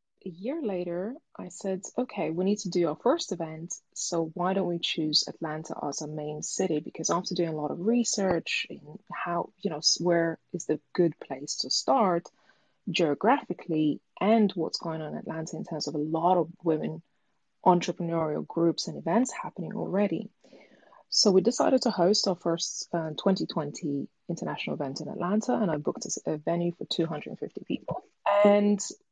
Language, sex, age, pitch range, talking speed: English, female, 20-39, 160-200 Hz, 175 wpm